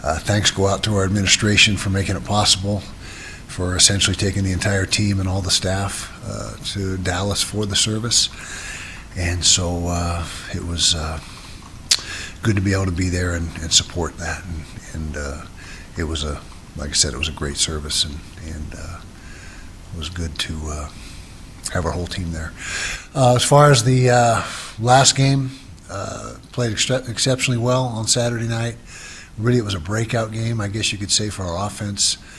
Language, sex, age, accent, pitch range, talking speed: English, male, 60-79, American, 85-105 Hz, 185 wpm